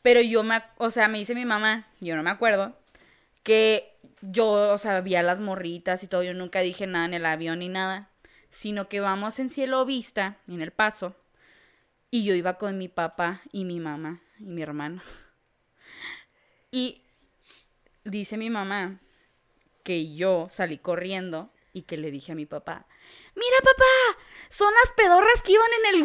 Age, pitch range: 20-39, 205-330 Hz